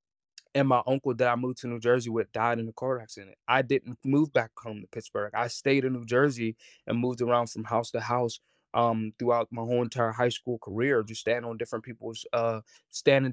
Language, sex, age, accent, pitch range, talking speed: English, male, 20-39, American, 115-130 Hz, 220 wpm